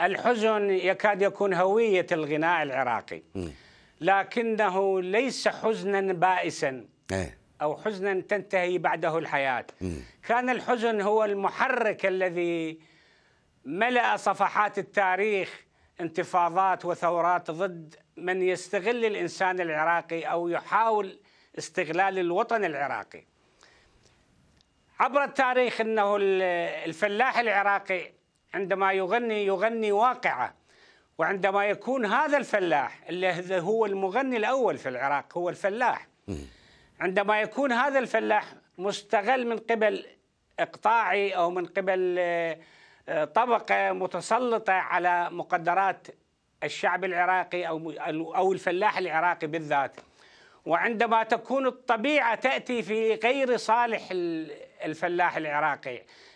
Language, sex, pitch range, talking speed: Arabic, male, 175-220 Hz, 90 wpm